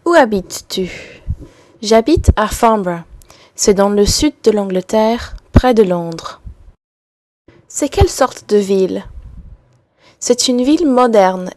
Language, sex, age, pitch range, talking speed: English, female, 20-39, 195-255 Hz, 120 wpm